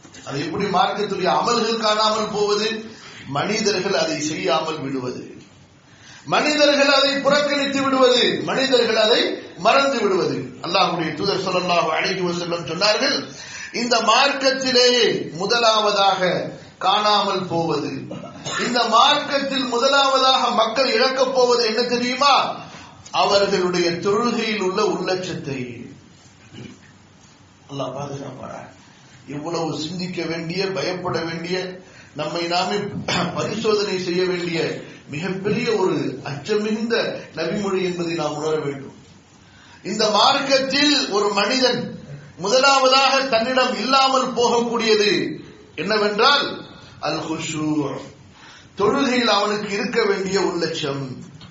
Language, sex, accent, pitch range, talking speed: English, male, Indian, 165-240 Hz, 90 wpm